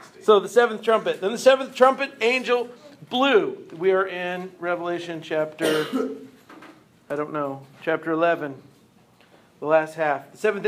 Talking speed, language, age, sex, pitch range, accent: 140 wpm, English, 40-59, male, 180-220 Hz, American